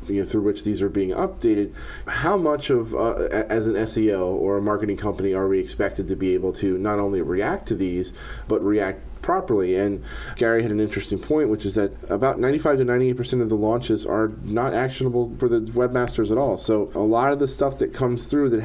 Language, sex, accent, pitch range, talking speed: English, male, American, 100-120 Hz, 220 wpm